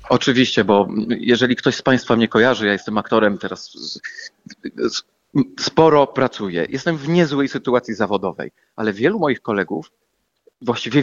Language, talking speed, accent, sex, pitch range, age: Polish, 130 wpm, native, male, 120-160 Hz, 30-49